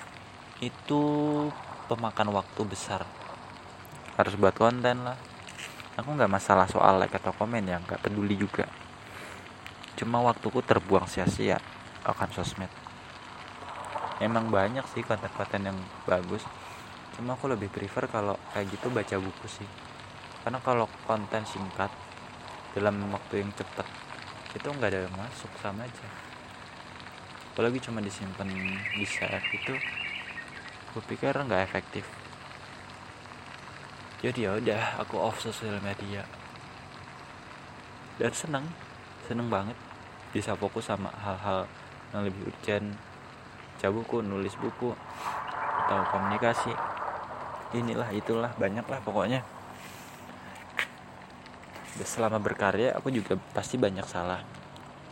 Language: Indonesian